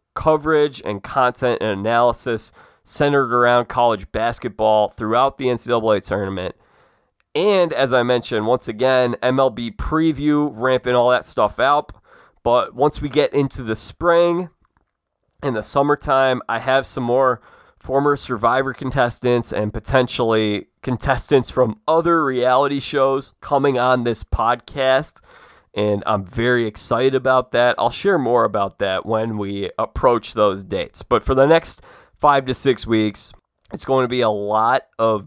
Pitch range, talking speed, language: 115-140 Hz, 145 wpm, English